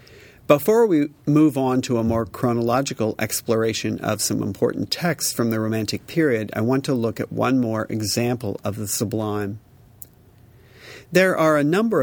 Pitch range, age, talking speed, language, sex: 110-130 Hz, 50-69, 160 wpm, English, male